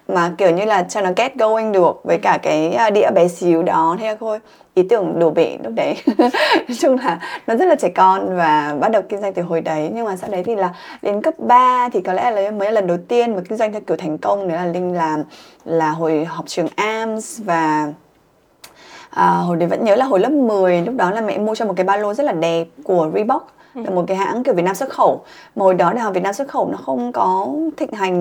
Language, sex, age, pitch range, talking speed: Vietnamese, female, 20-39, 180-240 Hz, 255 wpm